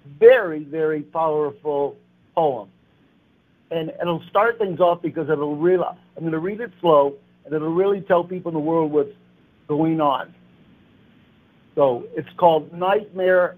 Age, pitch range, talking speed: 60-79, 150-180 Hz, 150 wpm